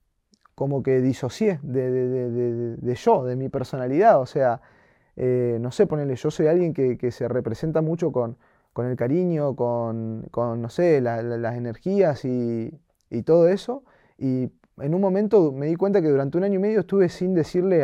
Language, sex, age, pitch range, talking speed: Spanish, male, 20-39, 130-180 Hz, 195 wpm